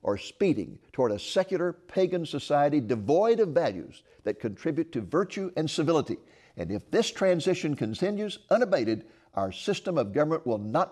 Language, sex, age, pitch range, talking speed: English, male, 60-79, 105-175 Hz, 155 wpm